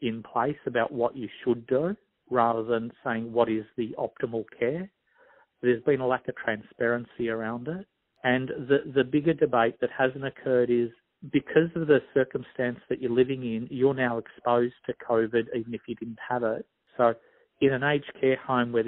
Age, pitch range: 50-69, 115-135 Hz